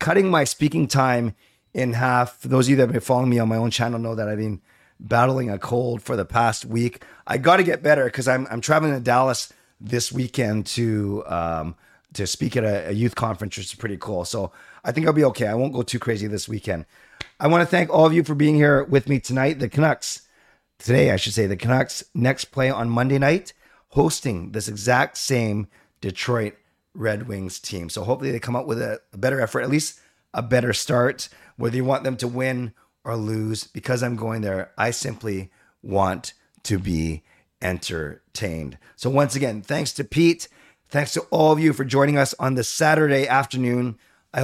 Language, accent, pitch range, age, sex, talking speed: English, American, 110-135 Hz, 30-49, male, 210 wpm